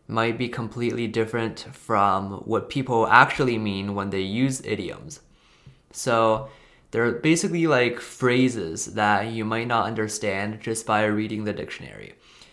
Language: Chinese